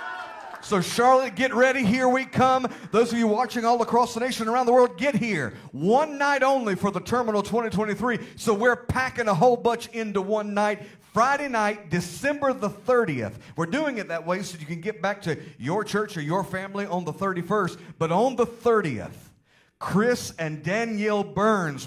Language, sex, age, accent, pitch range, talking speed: English, male, 40-59, American, 170-230 Hz, 190 wpm